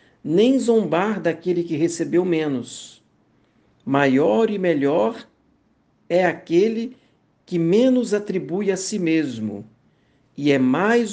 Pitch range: 145-195 Hz